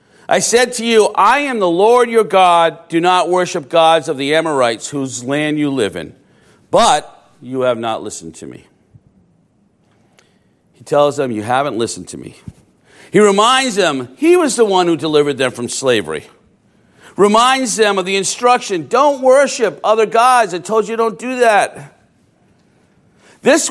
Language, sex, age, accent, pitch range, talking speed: English, male, 50-69, American, 155-225 Hz, 165 wpm